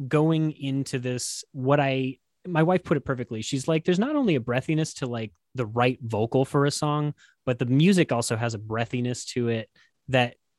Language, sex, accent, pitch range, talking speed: English, male, American, 120-150 Hz, 200 wpm